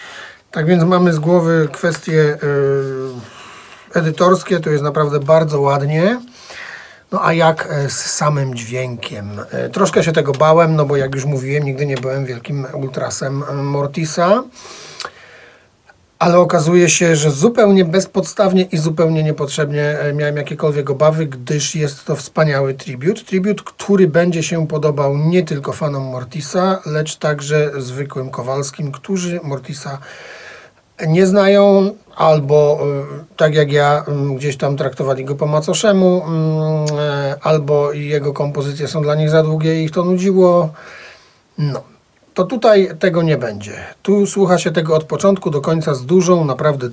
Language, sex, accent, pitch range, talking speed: Polish, male, native, 140-175 Hz, 135 wpm